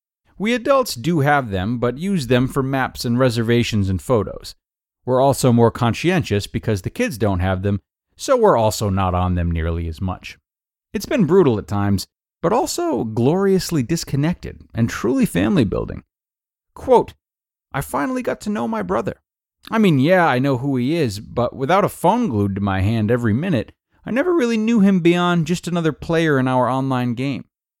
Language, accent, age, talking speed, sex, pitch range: English, American, 30-49, 185 wpm, male, 105-165 Hz